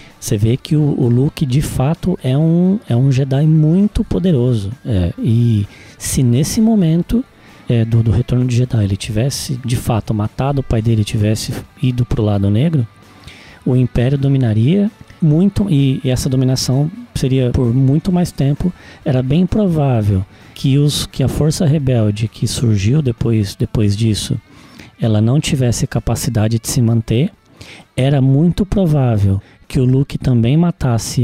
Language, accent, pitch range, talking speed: Portuguese, Brazilian, 120-160 Hz, 160 wpm